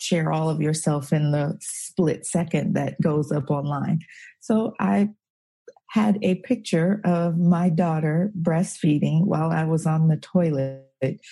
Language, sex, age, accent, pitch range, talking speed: English, female, 40-59, American, 165-195 Hz, 145 wpm